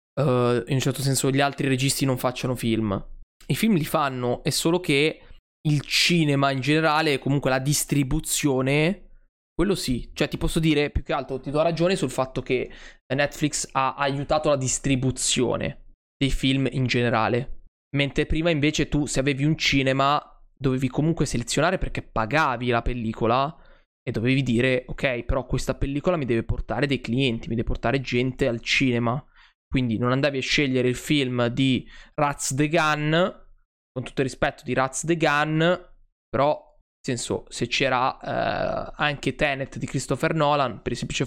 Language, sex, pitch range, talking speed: Italian, male, 125-150 Hz, 170 wpm